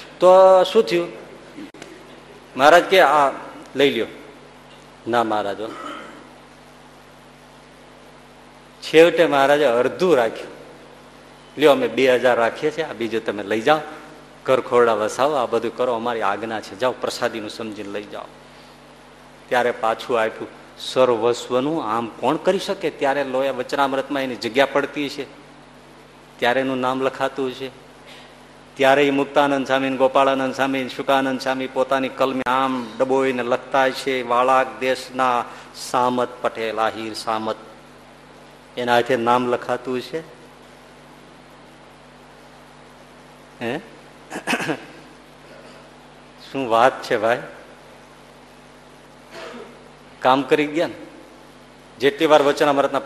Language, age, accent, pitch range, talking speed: Gujarati, 50-69, native, 120-140 Hz, 50 wpm